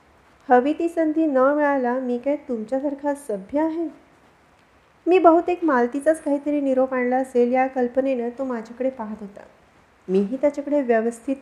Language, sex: Marathi, female